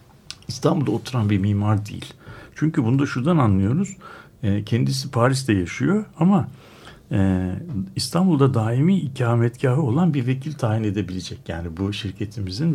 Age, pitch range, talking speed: 60-79, 100-135 Hz, 120 wpm